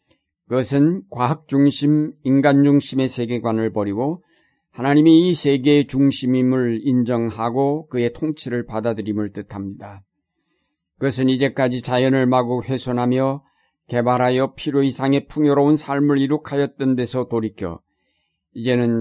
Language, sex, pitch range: Korean, male, 115-140 Hz